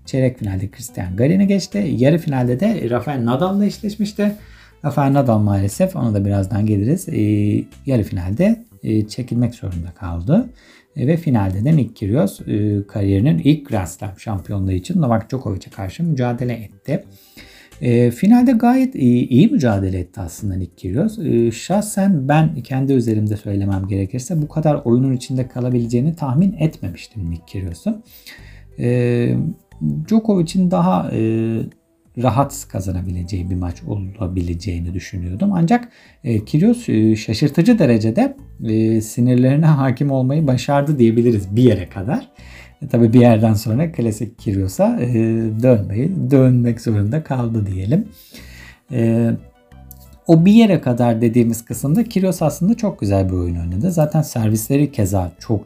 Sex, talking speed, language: male, 125 wpm, Turkish